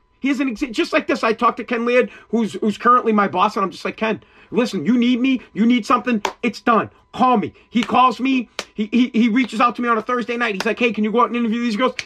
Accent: American